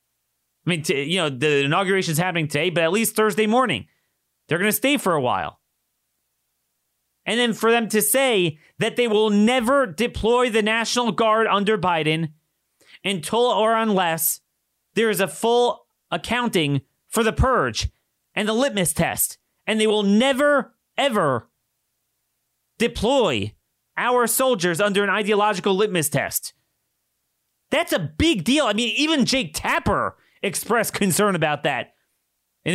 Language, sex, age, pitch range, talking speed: English, male, 30-49, 170-240 Hz, 145 wpm